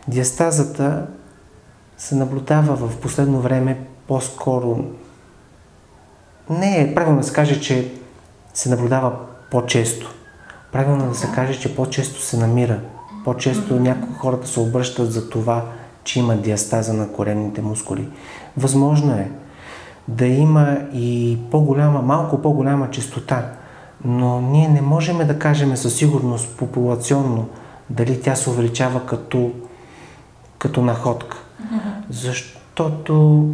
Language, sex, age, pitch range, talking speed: Bulgarian, male, 30-49, 120-145 Hz, 115 wpm